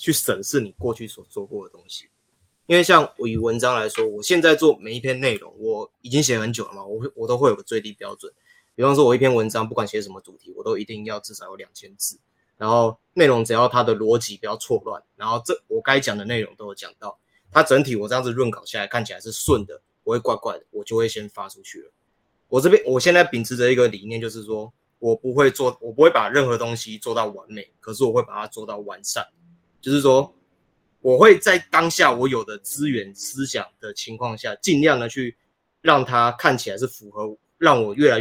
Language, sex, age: Chinese, male, 20-39